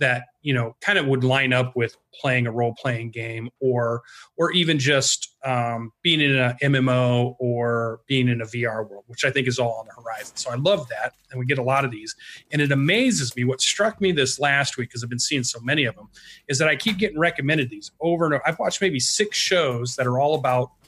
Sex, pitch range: male, 125-150 Hz